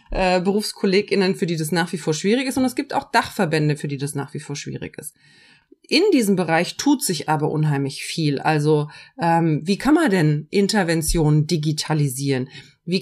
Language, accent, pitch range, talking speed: German, German, 160-215 Hz, 180 wpm